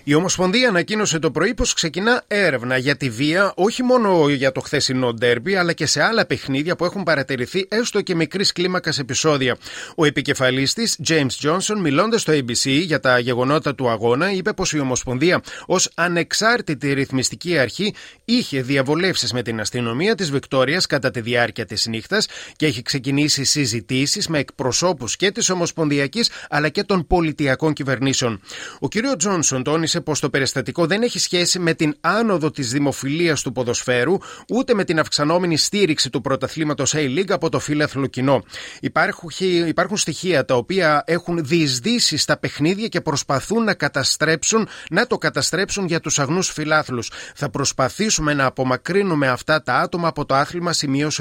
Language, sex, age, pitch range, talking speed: Greek, male, 30-49, 135-180 Hz, 160 wpm